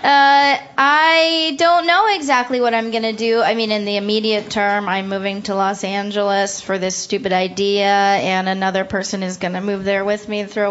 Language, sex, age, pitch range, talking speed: English, female, 20-39, 200-250 Hz, 205 wpm